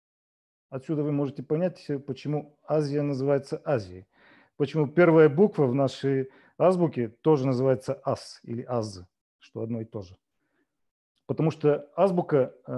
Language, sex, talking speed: Russian, male, 125 wpm